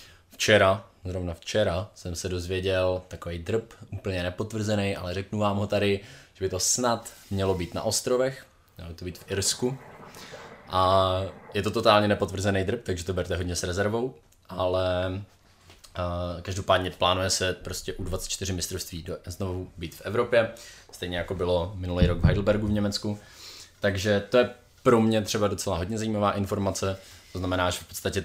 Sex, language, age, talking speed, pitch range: male, Czech, 20-39, 165 wpm, 90-100 Hz